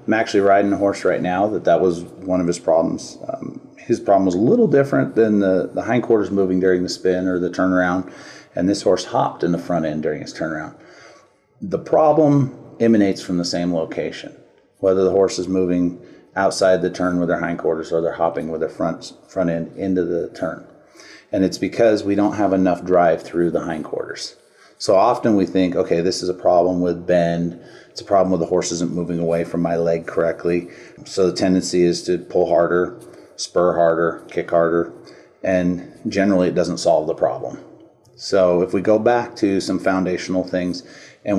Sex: male